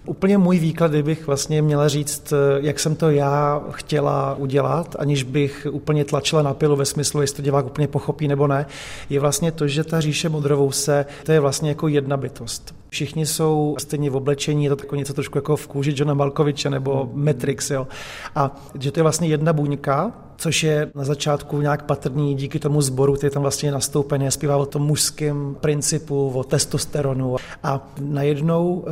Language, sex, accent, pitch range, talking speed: Czech, male, native, 140-150 Hz, 185 wpm